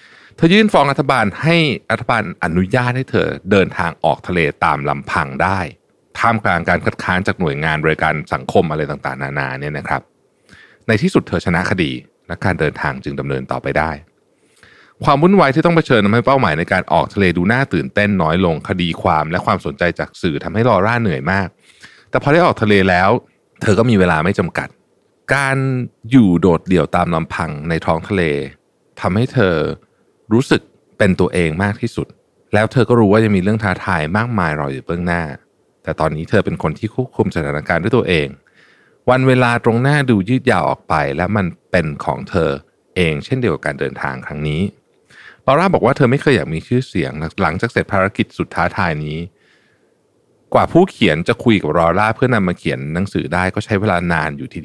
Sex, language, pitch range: male, Thai, 80-120 Hz